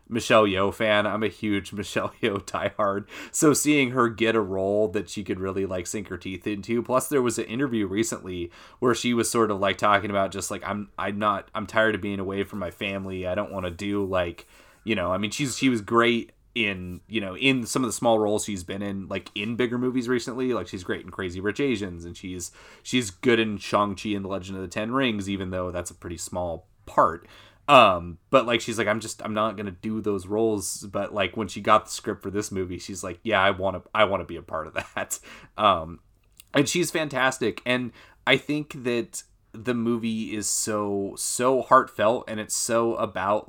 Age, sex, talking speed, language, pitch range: 30-49, male, 230 wpm, English, 95-115 Hz